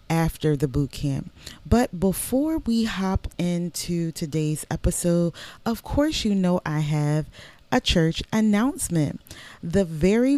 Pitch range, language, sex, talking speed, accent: 165-215 Hz, English, female, 125 wpm, American